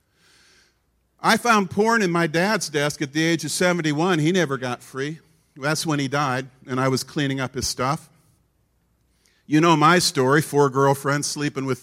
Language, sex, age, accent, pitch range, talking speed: English, male, 50-69, American, 150-205 Hz, 180 wpm